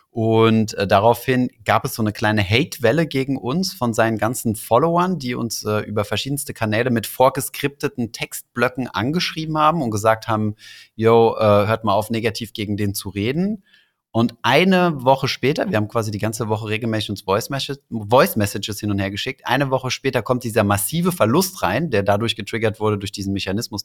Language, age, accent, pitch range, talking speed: German, 30-49, German, 100-120 Hz, 180 wpm